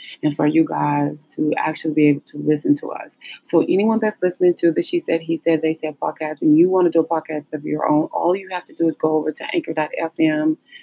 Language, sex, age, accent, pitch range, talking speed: English, female, 30-49, American, 155-215 Hz, 250 wpm